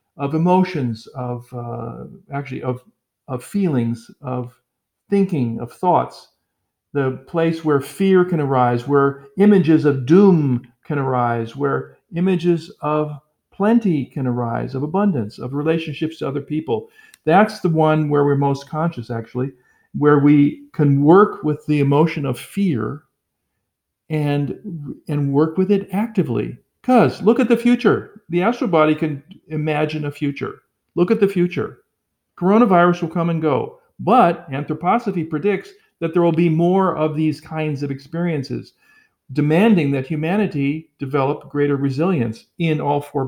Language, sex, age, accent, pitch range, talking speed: English, male, 50-69, American, 135-175 Hz, 140 wpm